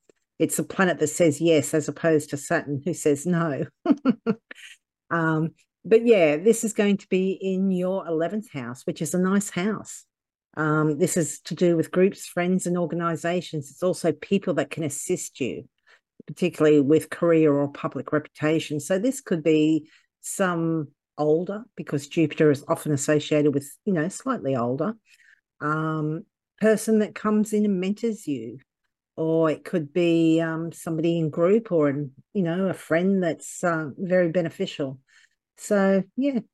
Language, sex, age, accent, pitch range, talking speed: English, female, 50-69, Australian, 150-190 Hz, 160 wpm